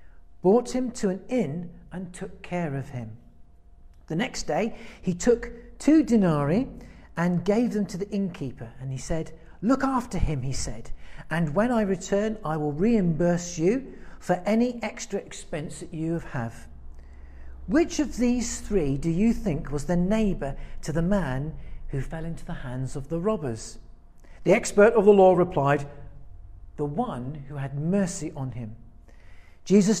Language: English